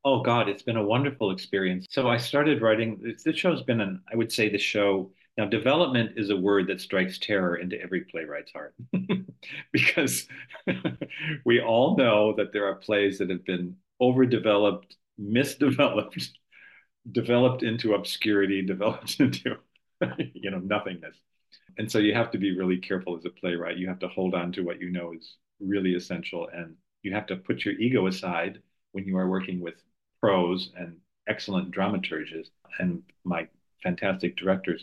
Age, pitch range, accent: 50-69, 95-115 Hz, American